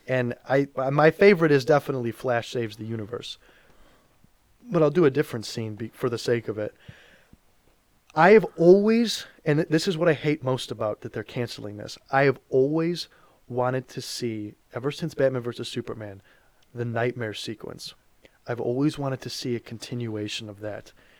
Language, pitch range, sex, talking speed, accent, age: English, 115-135 Hz, male, 170 wpm, American, 20-39